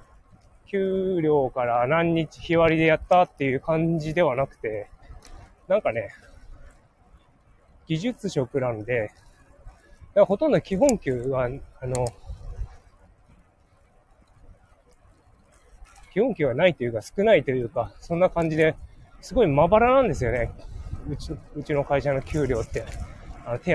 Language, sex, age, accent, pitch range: Japanese, male, 20-39, native, 105-165 Hz